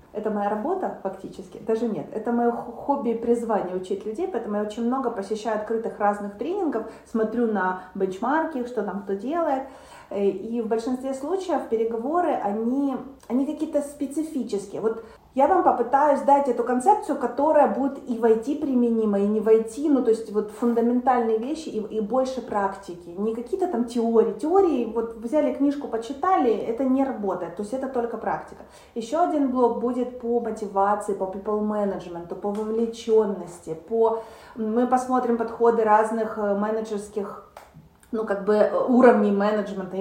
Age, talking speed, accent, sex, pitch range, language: 30-49, 155 wpm, native, female, 205-255 Hz, Ukrainian